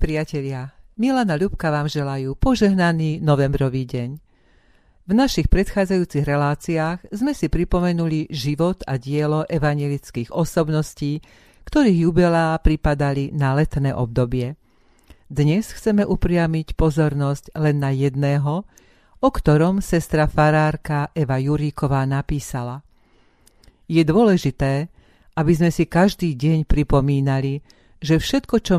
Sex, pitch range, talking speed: female, 140-170 Hz, 105 wpm